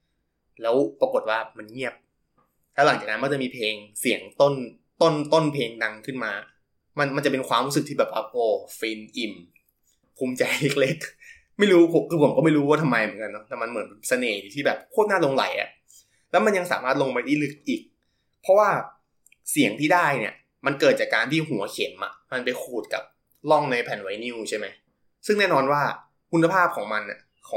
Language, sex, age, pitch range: Thai, male, 20-39, 130-175 Hz